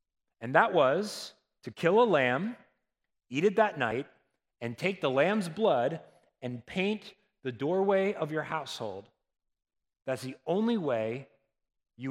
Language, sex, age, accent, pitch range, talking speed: English, male, 30-49, American, 130-195 Hz, 140 wpm